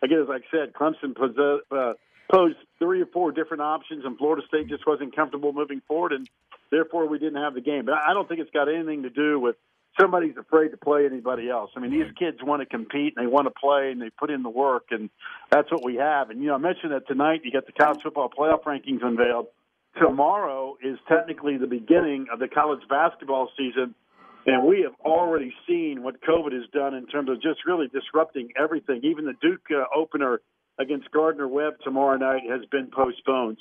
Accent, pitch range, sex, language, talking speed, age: American, 135-160 Hz, male, English, 210 wpm, 50-69